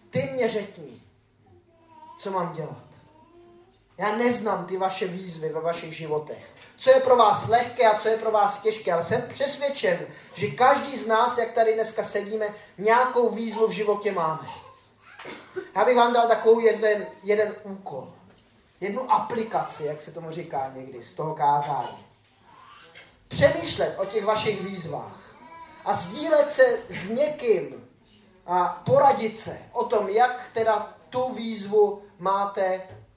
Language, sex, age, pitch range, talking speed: Czech, male, 20-39, 185-255 Hz, 140 wpm